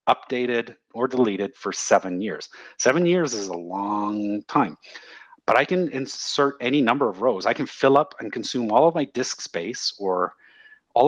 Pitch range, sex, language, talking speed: 100-145 Hz, male, English, 180 wpm